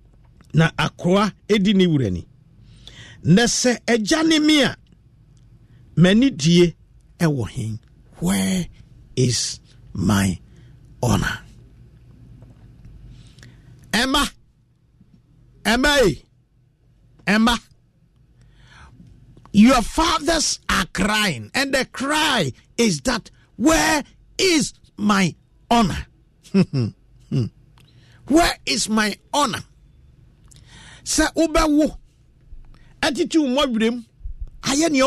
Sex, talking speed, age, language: male, 55 wpm, 50-69, English